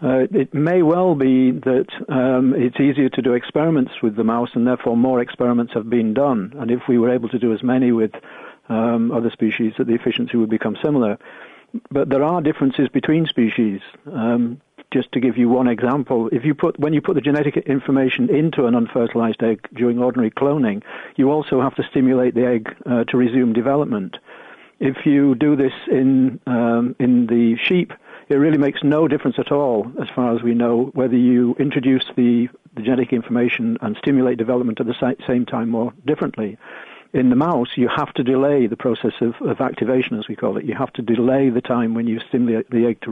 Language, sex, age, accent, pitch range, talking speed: English, male, 50-69, British, 120-140 Hz, 205 wpm